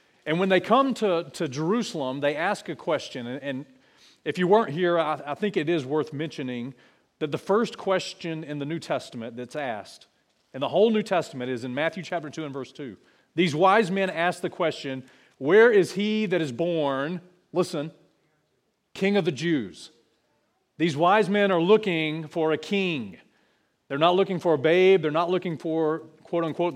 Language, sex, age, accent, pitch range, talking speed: English, male, 40-59, American, 150-190 Hz, 190 wpm